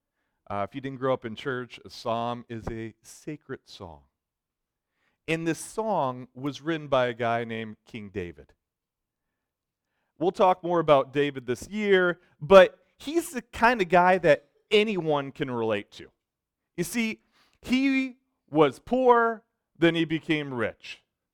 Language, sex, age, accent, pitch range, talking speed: English, male, 40-59, American, 115-185 Hz, 145 wpm